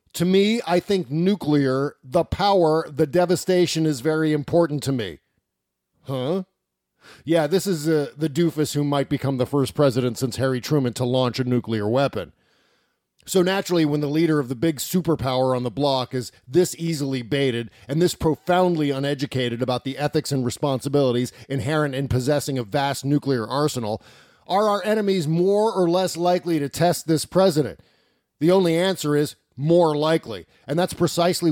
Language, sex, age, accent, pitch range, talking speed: English, male, 40-59, American, 135-175 Hz, 165 wpm